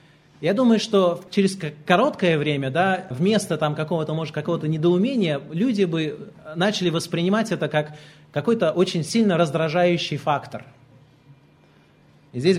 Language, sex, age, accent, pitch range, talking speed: Russian, male, 30-49, native, 135-180 Hz, 110 wpm